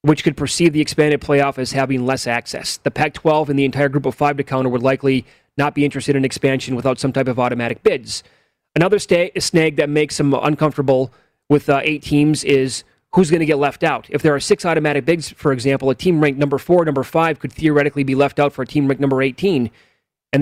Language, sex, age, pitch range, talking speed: English, male, 30-49, 135-155 Hz, 225 wpm